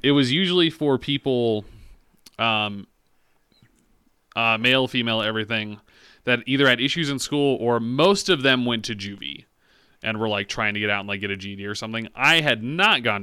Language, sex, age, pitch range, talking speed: English, male, 30-49, 105-125 Hz, 185 wpm